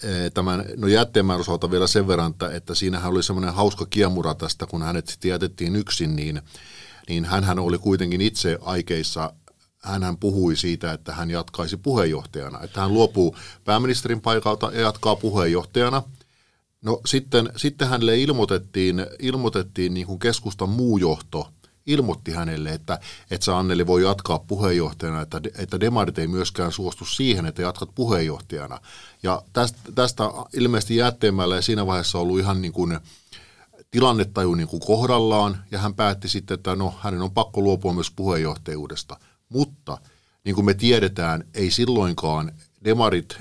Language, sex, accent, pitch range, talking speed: Finnish, male, native, 85-110 Hz, 145 wpm